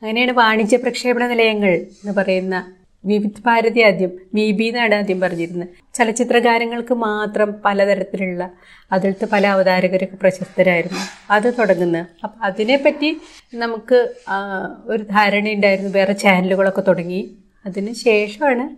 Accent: native